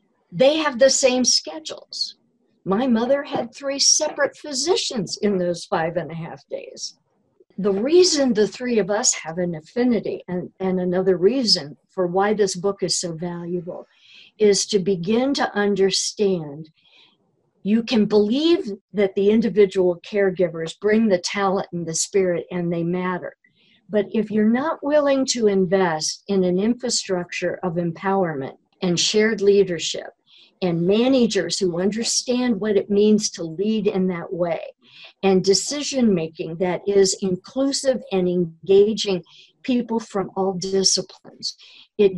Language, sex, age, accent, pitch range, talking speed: English, female, 50-69, American, 180-235 Hz, 140 wpm